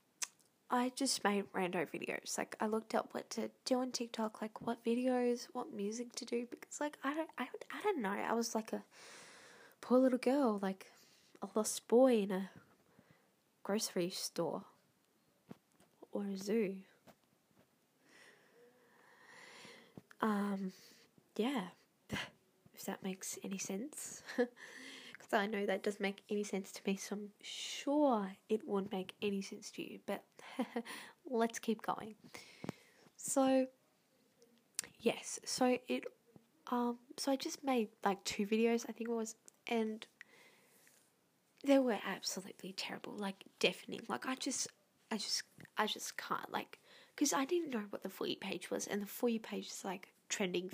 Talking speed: 150 wpm